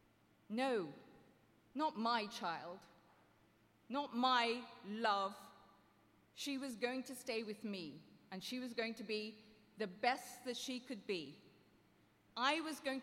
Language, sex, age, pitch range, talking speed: English, female, 40-59, 185-260 Hz, 135 wpm